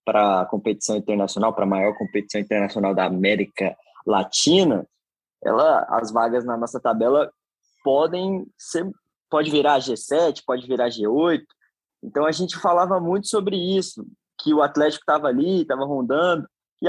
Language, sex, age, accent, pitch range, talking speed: Portuguese, male, 20-39, Brazilian, 110-170 Hz, 145 wpm